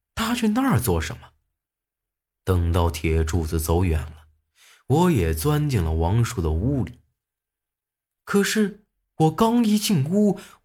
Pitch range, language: 80-120 Hz, Chinese